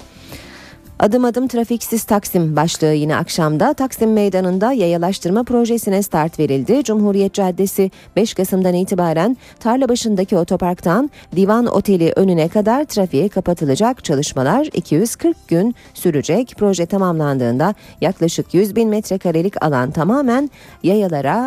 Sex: female